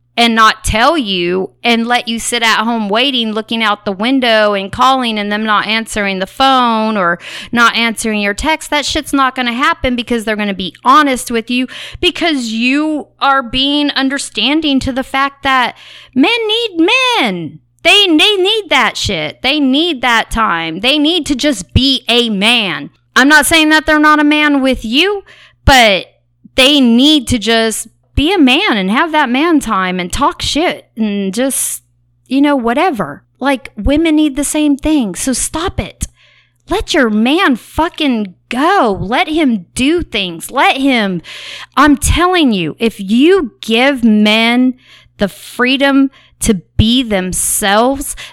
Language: English